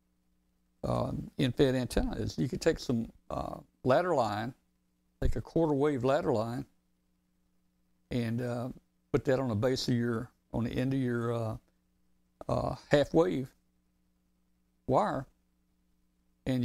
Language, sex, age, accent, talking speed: English, male, 60-79, American, 135 wpm